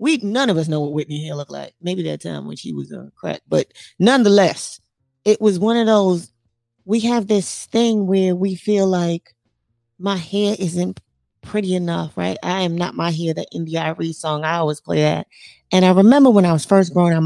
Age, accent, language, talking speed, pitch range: 20-39, American, English, 215 wpm, 160-215 Hz